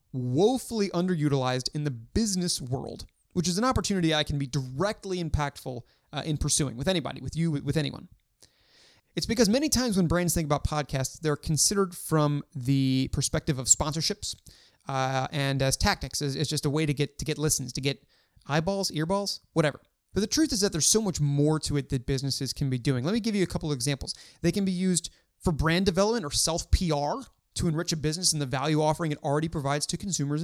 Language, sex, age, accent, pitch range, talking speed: English, male, 30-49, American, 145-190 Hz, 205 wpm